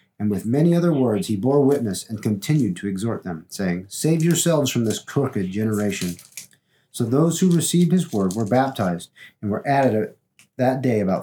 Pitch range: 105-150 Hz